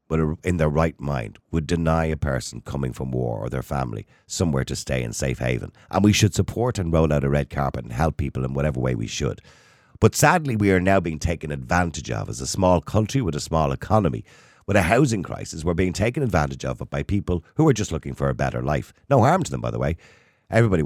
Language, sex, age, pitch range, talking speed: English, male, 50-69, 75-110 Hz, 235 wpm